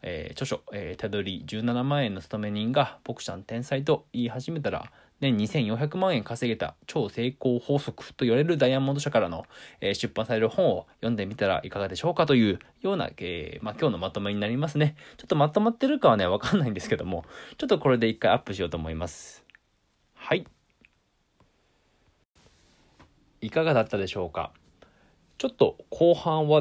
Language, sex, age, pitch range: Japanese, male, 20-39, 95-145 Hz